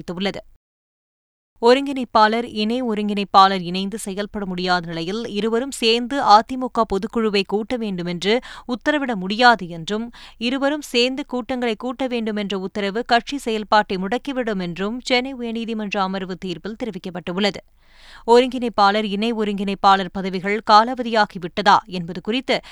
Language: Tamil